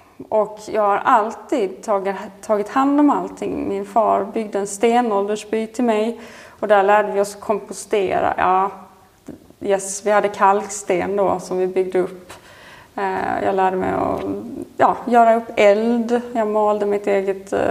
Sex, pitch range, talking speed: female, 195-230 Hz, 150 wpm